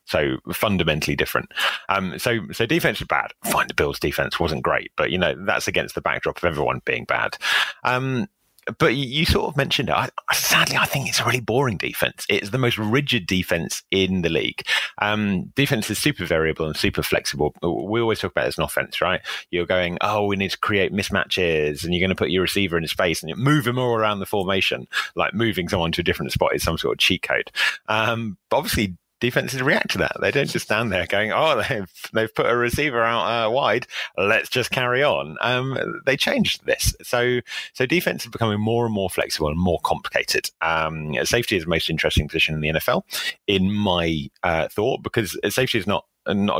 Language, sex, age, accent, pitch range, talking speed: English, male, 30-49, British, 85-115 Hz, 215 wpm